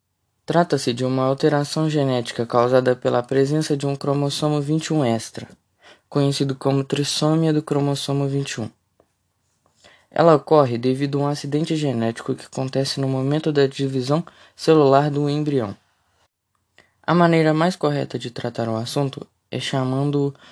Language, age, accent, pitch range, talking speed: Portuguese, 20-39, Brazilian, 125-150 Hz, 130 wpm